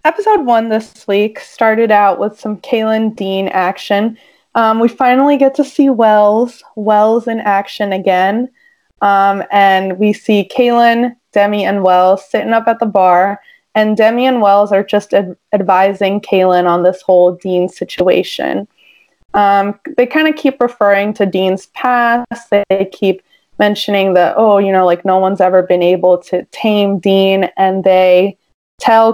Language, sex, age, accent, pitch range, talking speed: English, female, 20-39, American, 190-230 Hz, 160 wpm